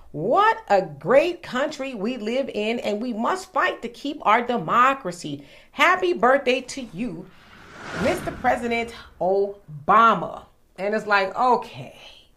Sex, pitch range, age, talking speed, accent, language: female, 215-330 Hz, 40-59, 125 wpm, American, English